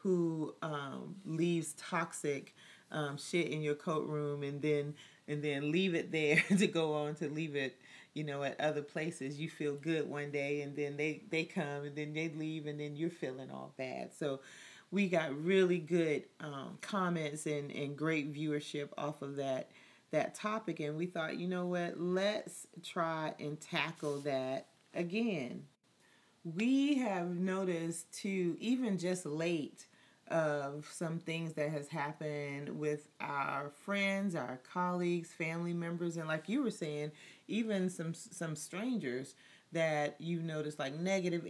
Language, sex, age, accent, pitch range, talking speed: English, female, 40-59, American, 150-175 Hz, 160 wpm